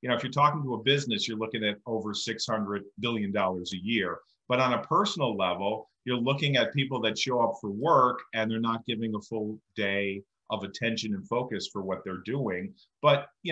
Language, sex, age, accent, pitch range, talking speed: English, male, 40-59, American, 110-145 Hz, 210 wpm